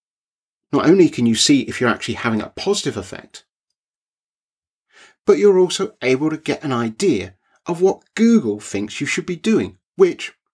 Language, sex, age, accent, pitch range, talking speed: English, male, 40-59, British, 105-180 Hz, 165 wpm